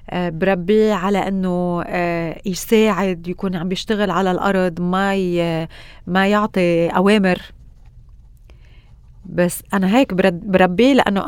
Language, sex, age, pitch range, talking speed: Arabic, female, 30-49, 185-230 Hz, 100 wpm